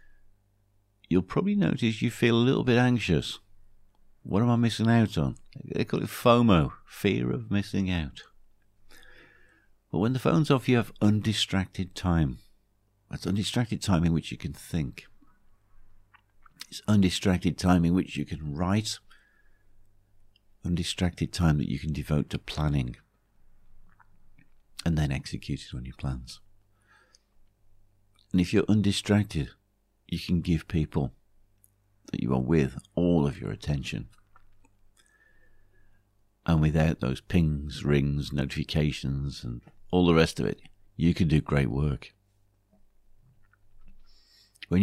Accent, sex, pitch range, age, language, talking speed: British, male, 85-100 Hz, 50-69, English, 130 wpm